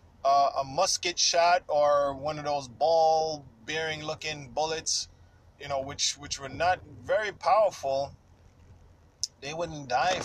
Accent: American